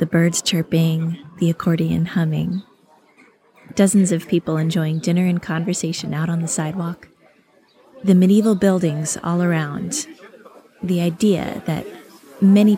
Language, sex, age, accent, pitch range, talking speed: English, female, 20-39, American, 165-200 Hz, 120 wpm